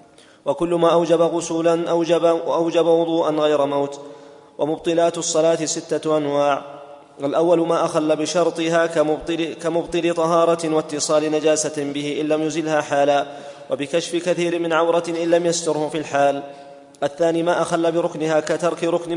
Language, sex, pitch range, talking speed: English, male, 150-170 Hz, 130 wpm